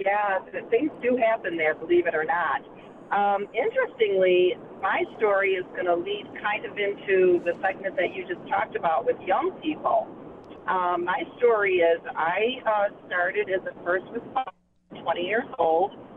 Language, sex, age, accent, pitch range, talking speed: English, female, 40-59, American, 180-265 Hz, 165 wpm